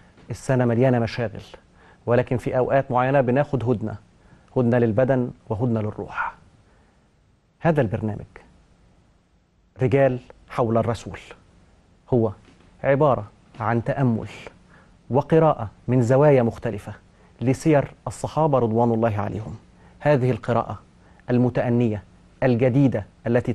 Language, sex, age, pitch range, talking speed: Arabic, male, 30-49, 105-130 Hz, 90 wpm